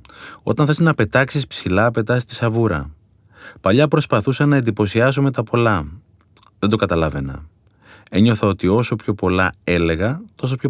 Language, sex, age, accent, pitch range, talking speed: Greek, male, 30-49, native, 95-135 Hz, 145 wpm